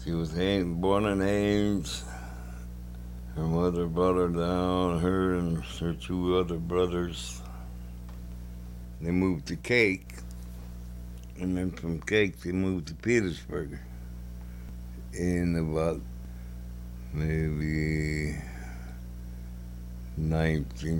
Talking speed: 90 wpm